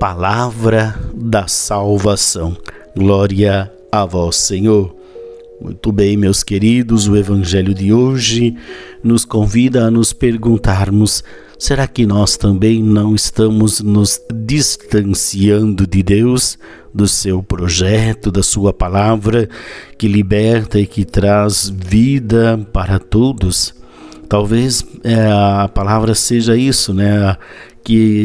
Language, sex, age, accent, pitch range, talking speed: Portuguese, male, 50-69, Brazilian, 100-120 Hz, 110 wpm